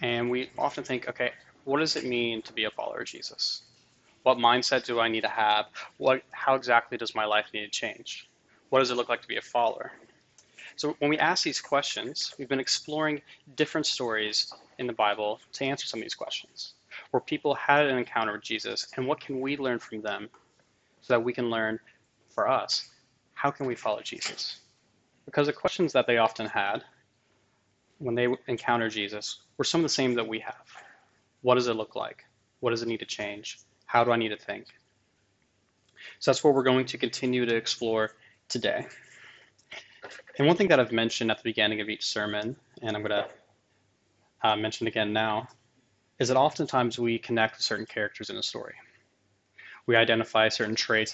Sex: male